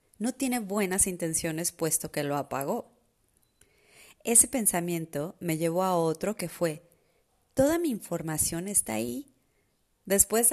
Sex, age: female, 30-49